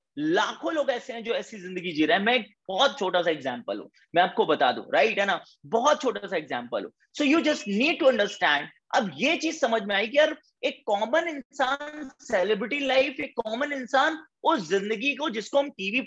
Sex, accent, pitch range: male, native, 190-255 Hz